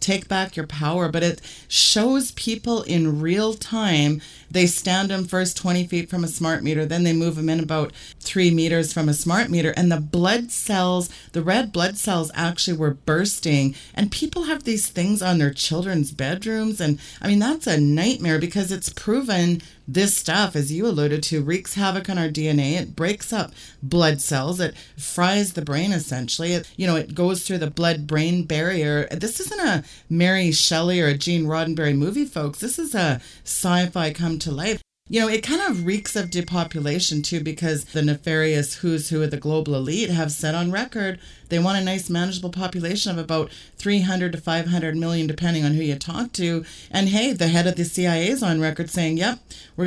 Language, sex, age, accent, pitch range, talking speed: English, female, 30-49, American, 155-190 Hz, 195 wpm